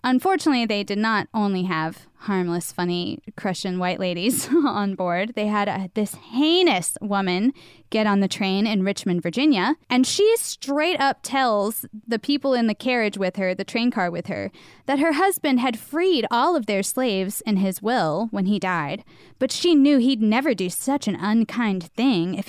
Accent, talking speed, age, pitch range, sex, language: American, 180 wpm, 10-29, 195-255 Hz, female, English